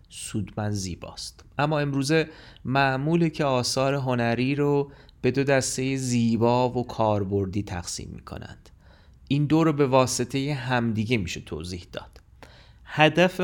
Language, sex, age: Persian, male, 30-49